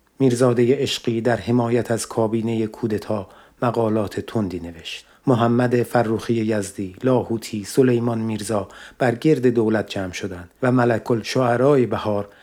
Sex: male